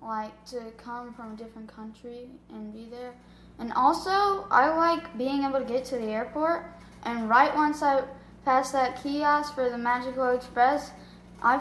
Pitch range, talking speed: 220-250 Hz, 170 wpm